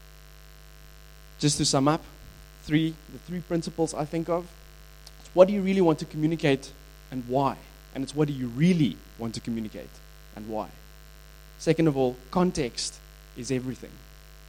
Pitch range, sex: 125-155 Hz, male